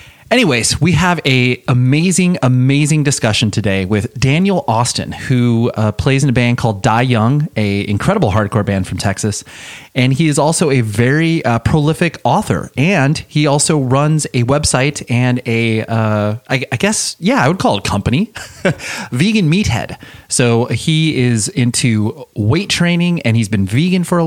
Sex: male